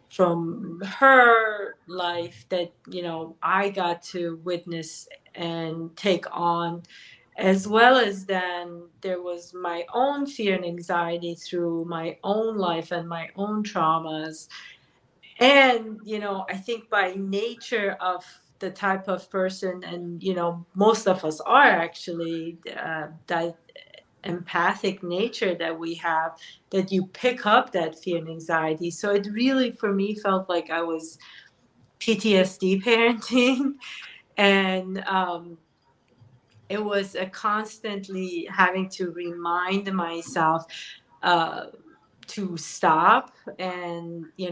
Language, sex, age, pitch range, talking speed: English, female, 40-59, 170-200 Hz, 125 wpm